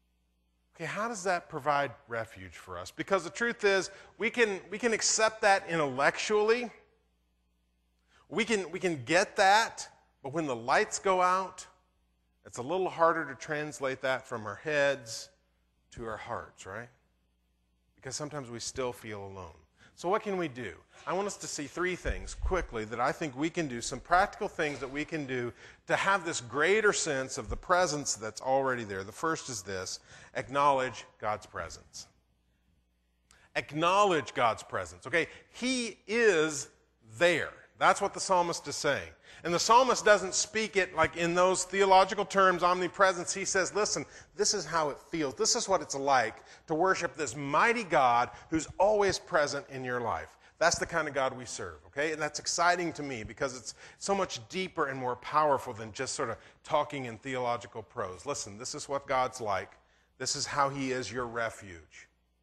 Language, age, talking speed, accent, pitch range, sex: English, 40-59, 180 wpm, American, 110-185 Hz, male